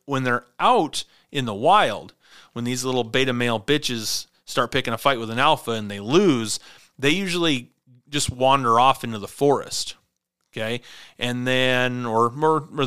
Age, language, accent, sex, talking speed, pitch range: 30-49, English, American, male, 170 wpm, 110-135 Hz